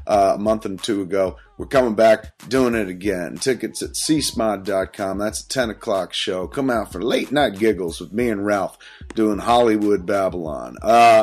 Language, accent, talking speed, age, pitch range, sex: English, American, 180 wpm, 30-49, 105-130 Hz, male